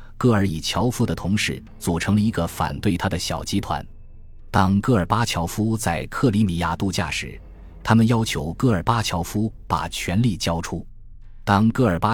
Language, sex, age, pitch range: Chinese, male, 20-39, 85-110 Hz